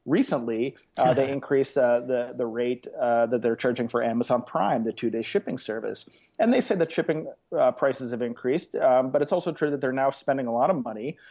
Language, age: English, 30-49